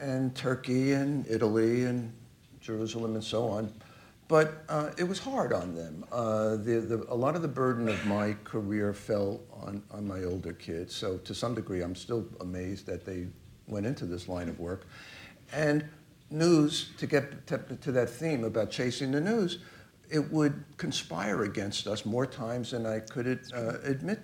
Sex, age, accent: male, 60-79, American